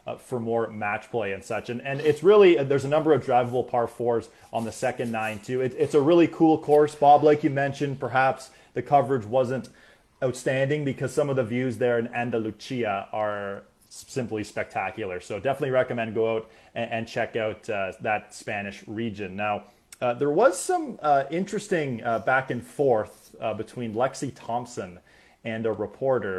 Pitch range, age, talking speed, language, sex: 115-150 Hz, 20-39, 180 wpm, English, male